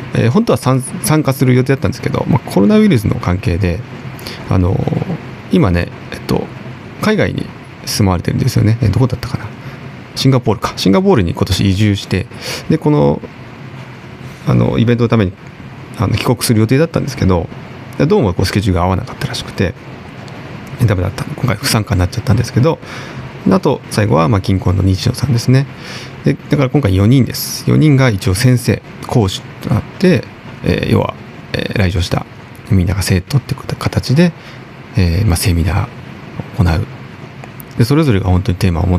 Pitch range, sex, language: 100-135 Hz, male, Japanese